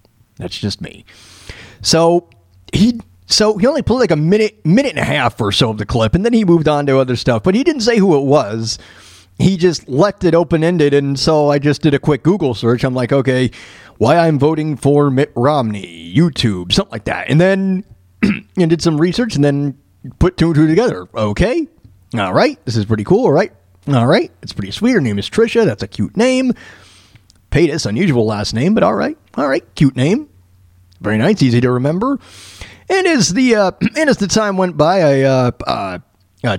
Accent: American